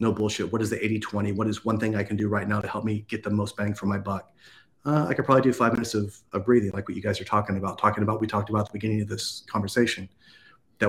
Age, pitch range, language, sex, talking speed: 30-49, 100-110 Hz, English, male, 305 wpm